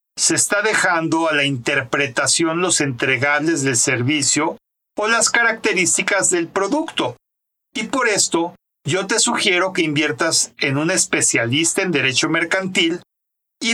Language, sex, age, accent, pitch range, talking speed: Spanish, male, 50-69, Mexican, 145-195 Hz, 130 wpm